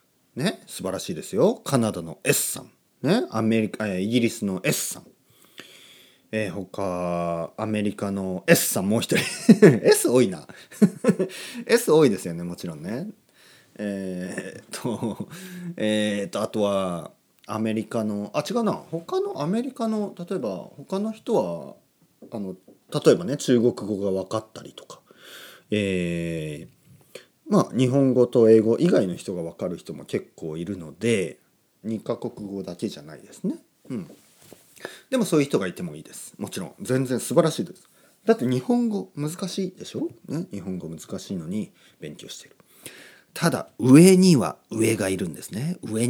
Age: 30-49